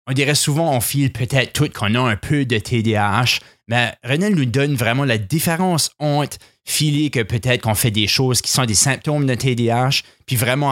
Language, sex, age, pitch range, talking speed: French, male, 30-49, 105-135 Hz, 200 wpm